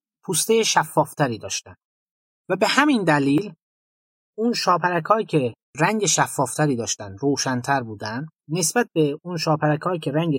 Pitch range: 140-195 Hz